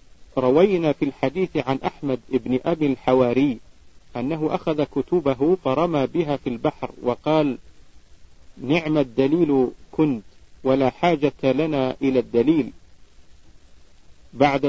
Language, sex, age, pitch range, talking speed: Arabic, male, 50-69, 120-155 Hz, 100 wpm